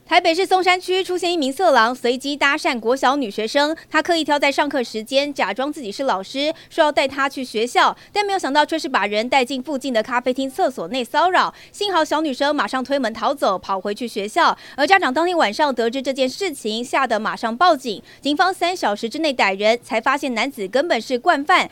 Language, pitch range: Chinese, 240-330 Hz